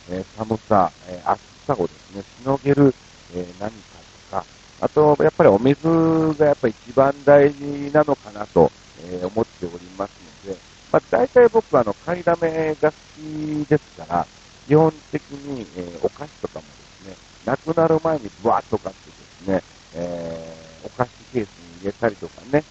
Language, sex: Japanese, male